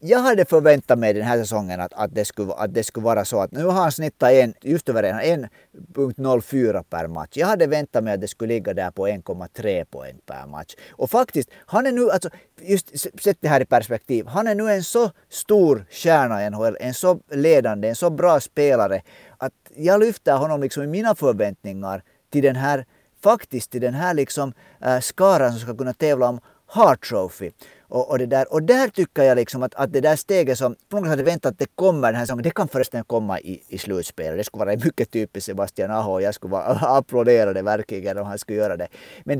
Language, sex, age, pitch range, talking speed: Swedish, male, 50-69, 115-160 Hz, 215 wpm